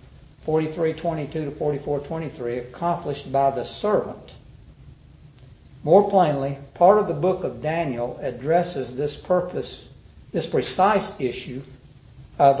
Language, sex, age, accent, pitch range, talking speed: English, male, 60-79, American, 130-165 Hz, 105 wpm